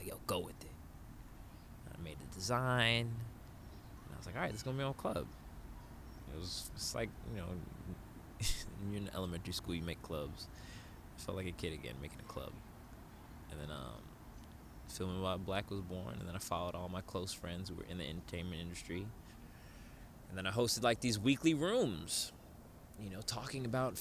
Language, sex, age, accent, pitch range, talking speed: English, male, 20-39, American, 85-110 Hz, 195 wpm